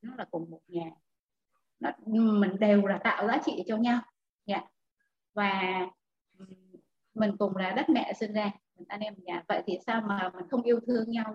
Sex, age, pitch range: female, 20-39, 205-275 Hz